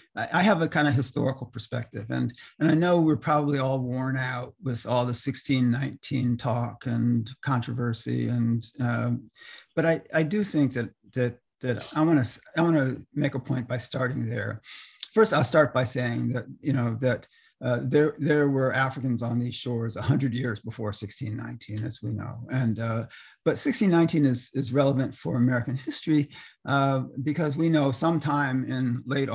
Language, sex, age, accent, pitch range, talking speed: English, male, 50-69, American, 120-145 Hz, 175 wpm